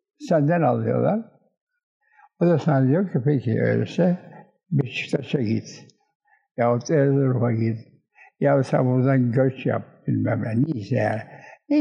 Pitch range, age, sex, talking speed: 140-190 Hz, 60-79, male, 120 wpm